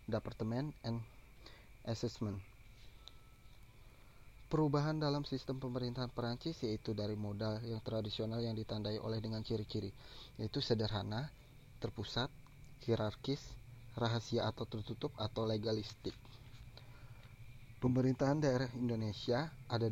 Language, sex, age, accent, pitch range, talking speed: Indonesian, male, 20-39, native, 110-130 Hz, 95 wpm